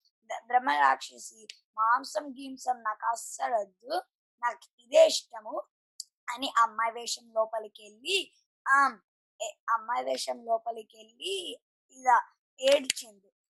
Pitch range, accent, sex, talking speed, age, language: 225-275 Hz, native, male, 80 wpm, 20-39, Telugu